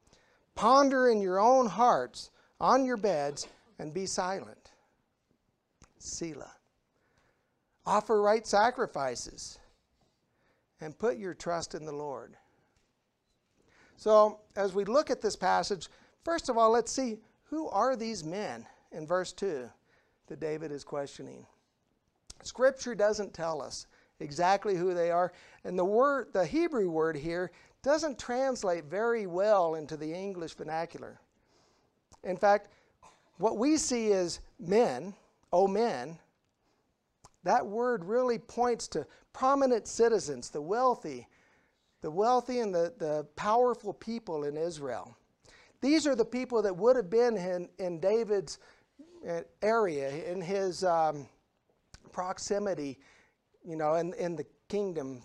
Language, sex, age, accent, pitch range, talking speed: English, male, 60-79, American, 170-240 Hz, 125 wpm